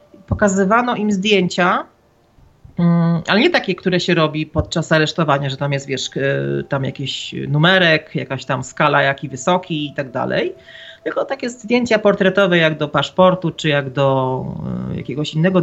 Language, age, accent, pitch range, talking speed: Polish, 40-59, native, 155-225 Hz, 145 wpm